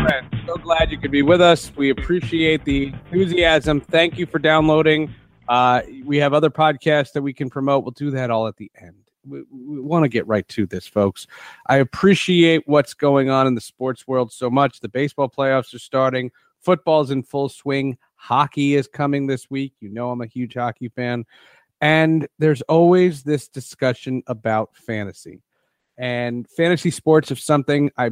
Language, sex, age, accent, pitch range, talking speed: English, male, 30-49, American, 120-155 Hz, 180 wpm